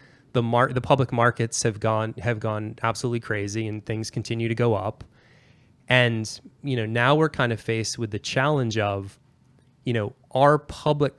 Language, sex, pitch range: English, male, 110-135 Hz